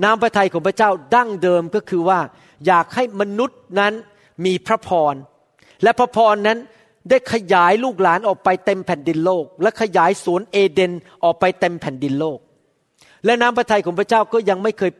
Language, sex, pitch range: Thai, male, 170-225 Hz